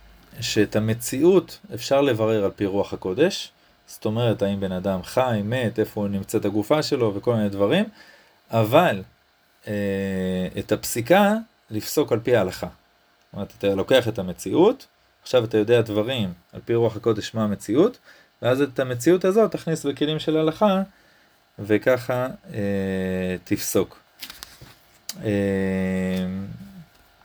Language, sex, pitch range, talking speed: Hebrew, male, 100-130 Hz, 130 wpm